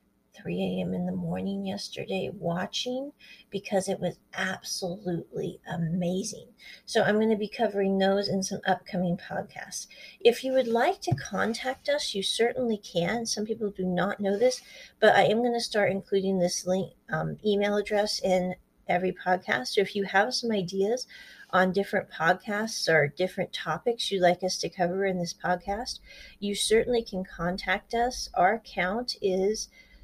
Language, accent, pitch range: English, American, 180-225 Hz